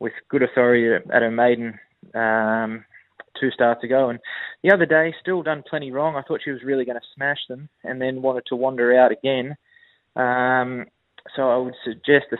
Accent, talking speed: Australian, 195 wpm